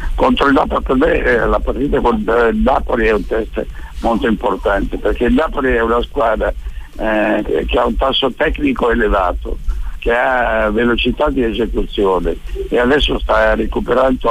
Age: 60-79